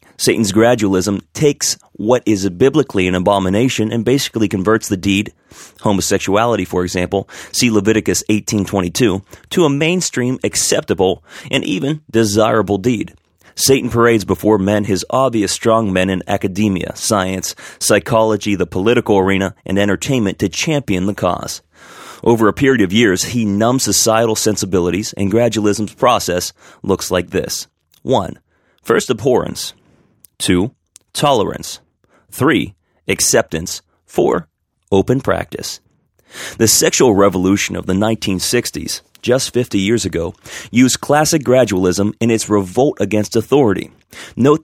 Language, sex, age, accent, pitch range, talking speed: English, male, 30-49, American, 95-120 Hz, 125 wpm